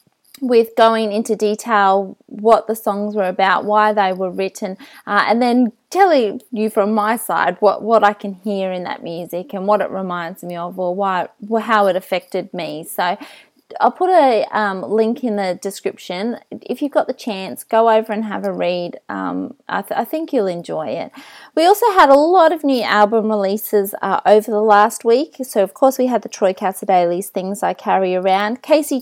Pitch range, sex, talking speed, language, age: 195-250 Hz, female, 195 wpm, English, 20-39